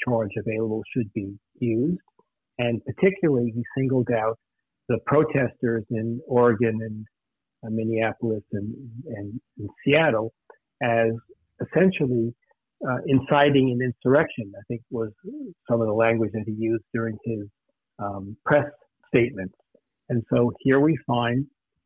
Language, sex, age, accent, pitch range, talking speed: English, male, 60-79, American, 115-130 Hz, 130 wpm